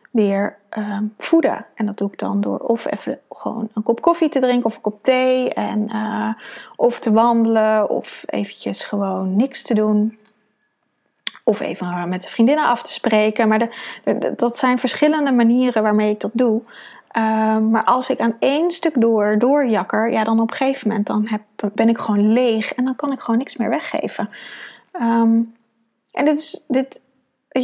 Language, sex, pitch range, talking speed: Dutch, female, 210-250 Hz, 190 wpm